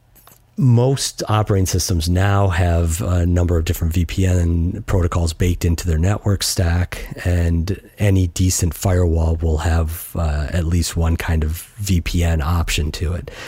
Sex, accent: male, American